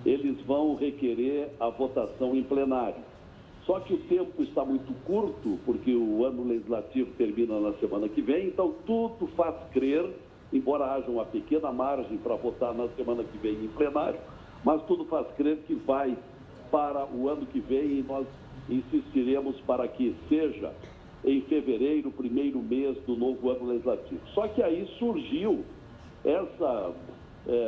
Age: 60-79